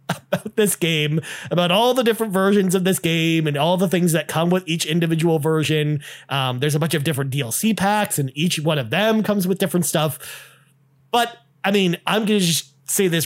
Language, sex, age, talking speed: English, male, 30-49, 210 wpm